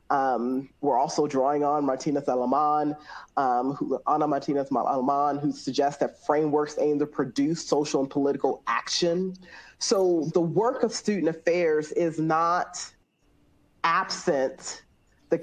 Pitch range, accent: 140-180 Hz, American